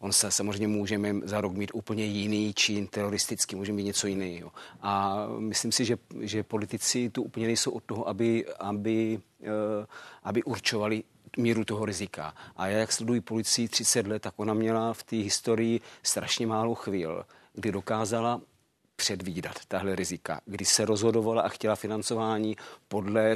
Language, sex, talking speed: Czech, male, 155 wpm